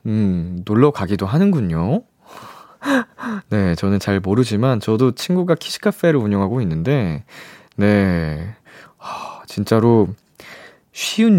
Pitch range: 100-155 Hz